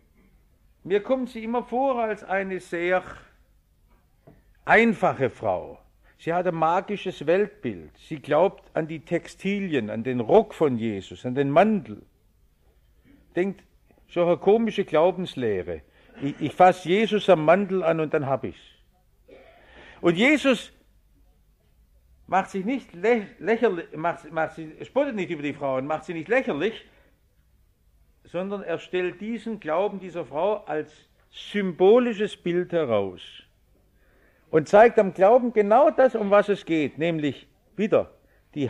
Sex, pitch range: male, 155-215 Hz